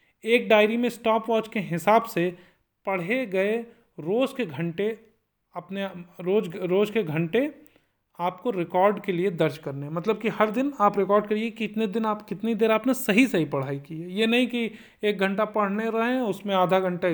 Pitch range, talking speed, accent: 170-220 Hz, 180 wpm, native